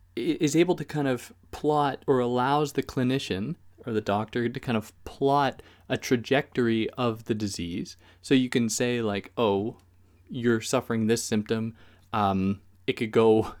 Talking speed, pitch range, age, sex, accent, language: 160 wpm, 95-130 Hz, 20-39, male, American, English